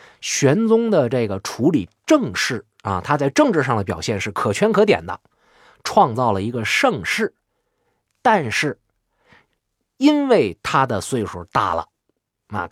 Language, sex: Chinese, male